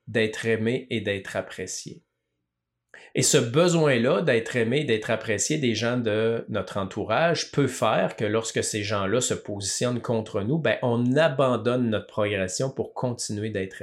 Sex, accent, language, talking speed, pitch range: male, Canadian, French, 155 wpm, 110-145 Hz